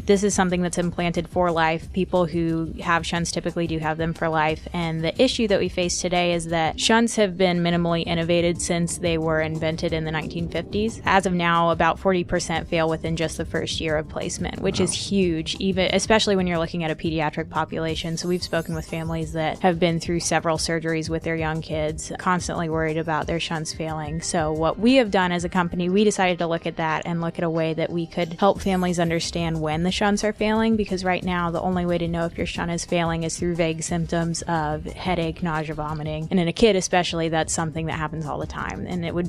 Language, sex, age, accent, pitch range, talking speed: English, female, 20-39, American, 160-180 Hz, 230 wpm